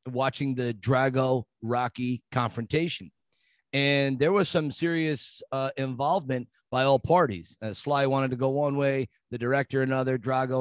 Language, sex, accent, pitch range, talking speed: English, male, American, 125-165 Hz, 145 wpm